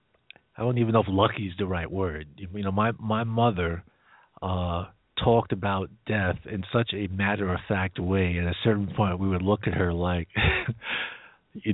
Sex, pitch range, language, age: male, 95-115 Hz, English, 50-69